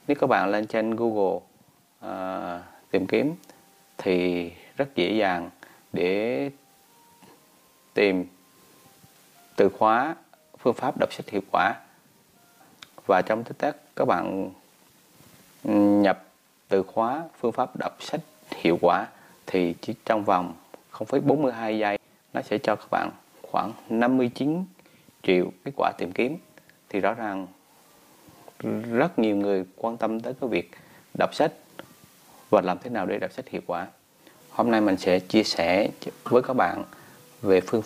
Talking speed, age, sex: 140 wpm, 30-49, male